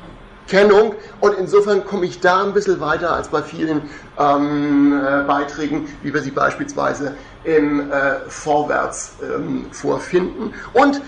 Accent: German